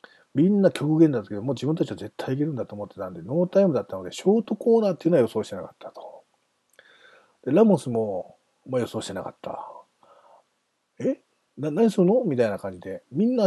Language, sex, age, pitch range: Japanese, male, 40-59, 110-180 Hz